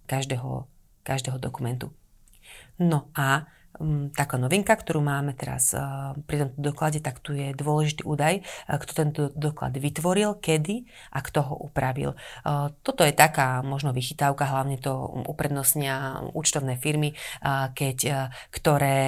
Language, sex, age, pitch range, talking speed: Slovak, female, 30-49, 130-150 Hz, 125 wpm